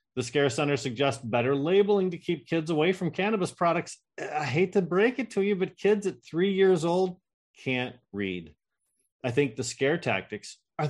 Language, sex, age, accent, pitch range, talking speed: English, male, 40-59, American, 125-185 Hz, 185 wpm